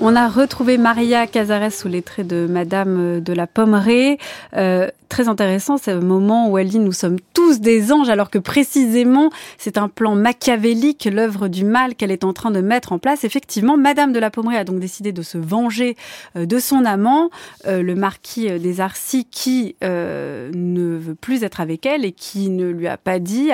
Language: French